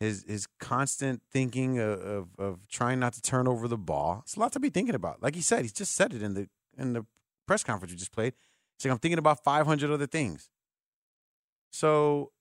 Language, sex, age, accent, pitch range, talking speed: English, male, 30-49, American, 100-145 Hz, 220 wpm